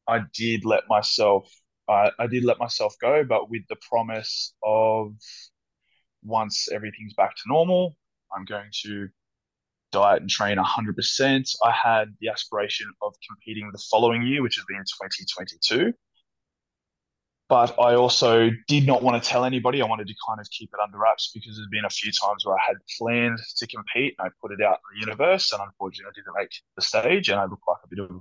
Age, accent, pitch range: 20-39, Australian, 105-120 Hz